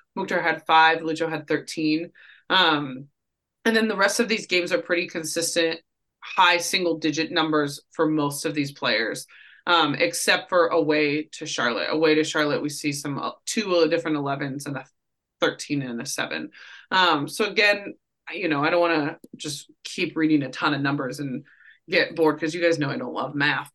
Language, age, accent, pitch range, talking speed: English, 20-39, American, 155-190 Hz, 185 wpm